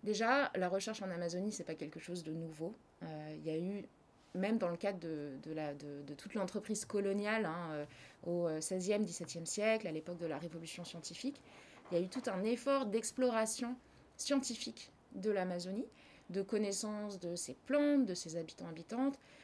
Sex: female